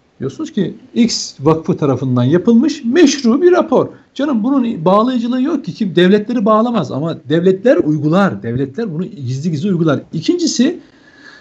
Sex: male